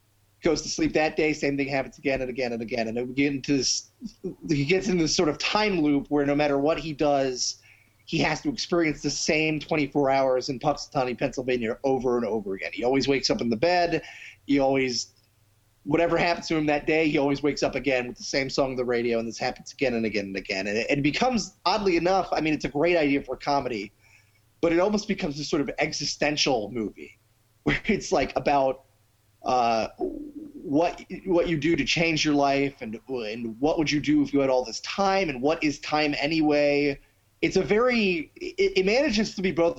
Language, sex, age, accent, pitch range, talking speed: English, male, 30-49, American, 125-160 Hz, 215 wpm